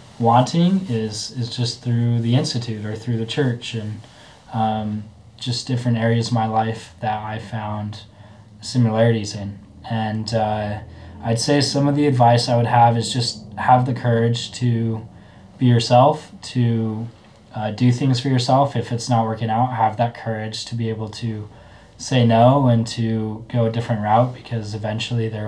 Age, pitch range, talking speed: 20-39, 105-120 Hz, 170 wpm